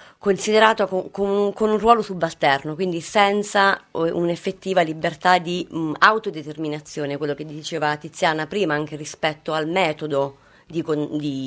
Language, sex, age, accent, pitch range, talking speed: Italian, female, 30-49, native, 150-185 Hz, 115 wpm